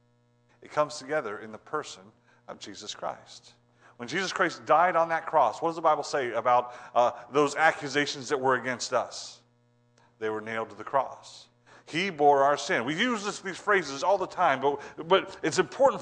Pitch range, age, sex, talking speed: 135-190 Hz, 40-59, male, 185 wpm